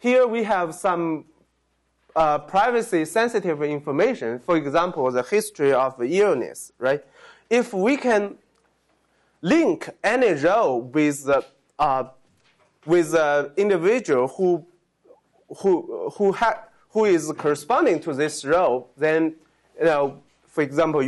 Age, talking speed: 20-39, 125 wpm